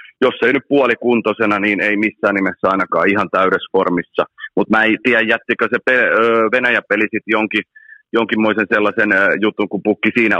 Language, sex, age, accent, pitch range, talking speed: Finnish, male, 30-49, native, 100-125 Hz, 155 wpm